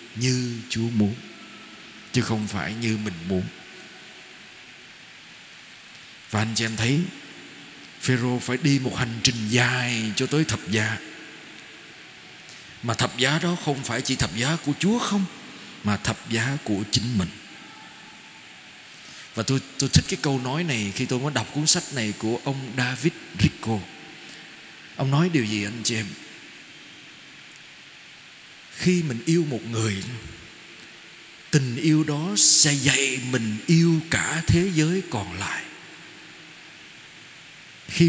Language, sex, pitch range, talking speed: Vietnamese, male, 115-160 Hz, 135 wpm